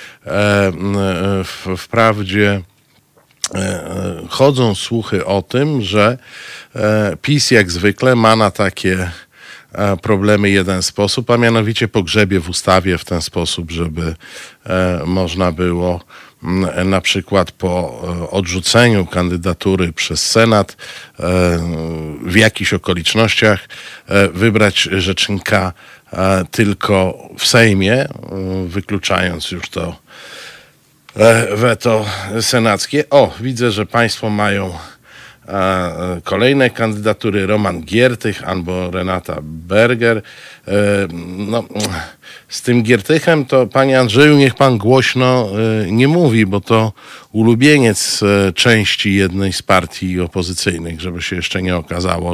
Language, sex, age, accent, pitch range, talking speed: Polish, male, 50-69, native, 90-115 Hz, 95 wpm